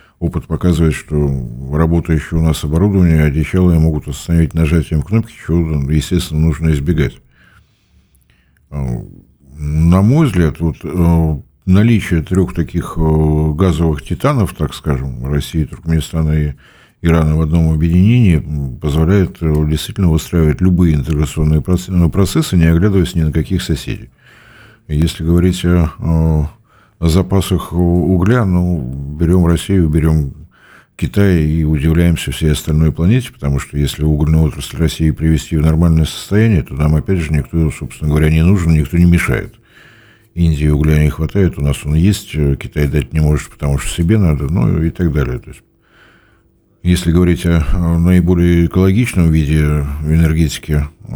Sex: male